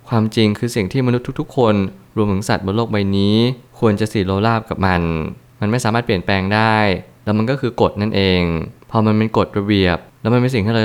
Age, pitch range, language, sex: 20-39, 95-115 Hz, Thai, male